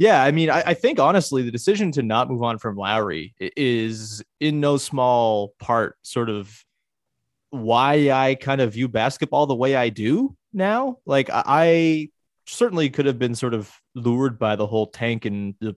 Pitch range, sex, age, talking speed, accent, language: 115-140 Hz, male, 30-49, 180 wpm, American, English